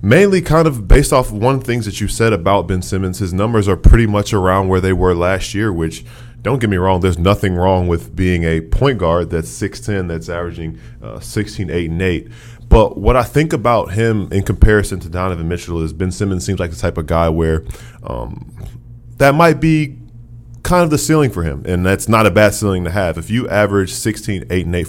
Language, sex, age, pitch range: English, male, 20-39, 90-115 Hz